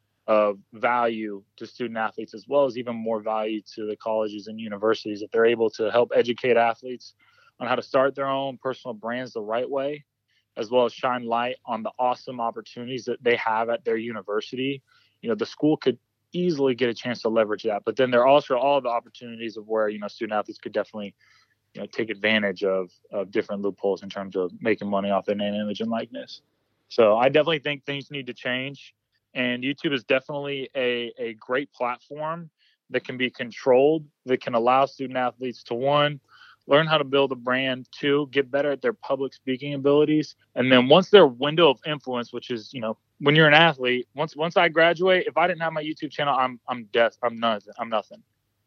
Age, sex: 20-39, male